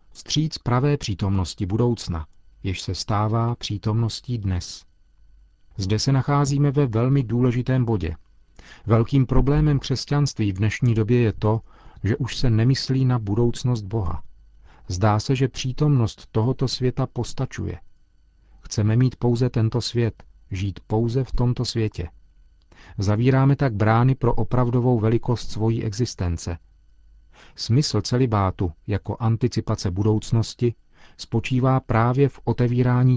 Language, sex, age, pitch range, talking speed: Czech, male, 40-59, 95-125 Hz, 120 wpm